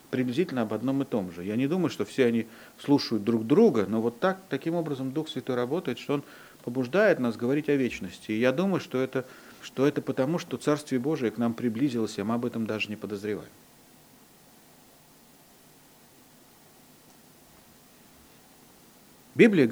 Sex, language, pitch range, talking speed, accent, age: male, Russian, 110-150 Hz, 155 wpm, native, 40-59